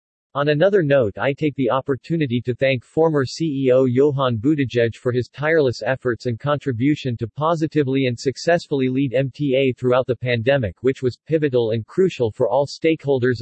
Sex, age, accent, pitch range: male, 50-69, American, 120-150 Hz